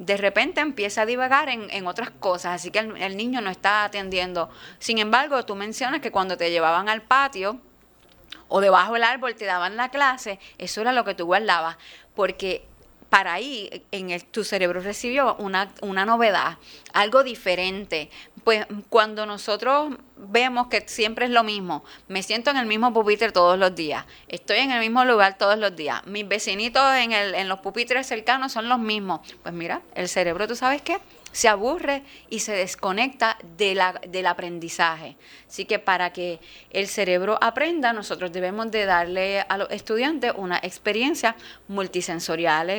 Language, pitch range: Spanish, 180-230 Hz